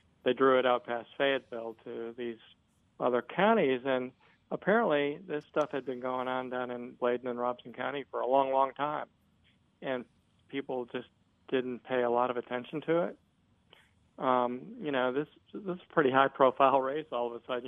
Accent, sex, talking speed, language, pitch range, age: American, male, 185 wpm, English, 120-140 Hz, 40-59